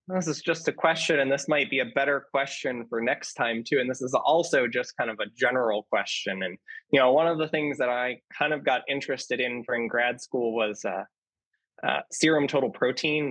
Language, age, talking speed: English, 20-39, 220 wpm